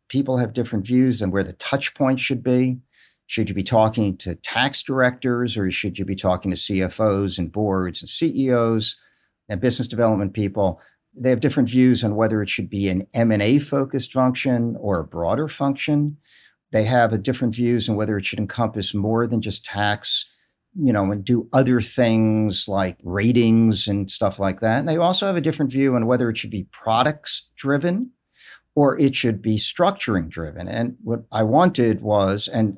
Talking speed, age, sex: 190 wpm, 50-69, male